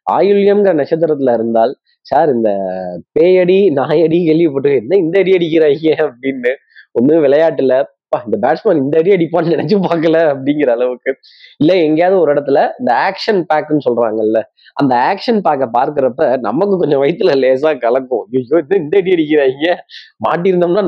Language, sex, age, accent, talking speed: Tamil, male, 20-39, native, 130 wpm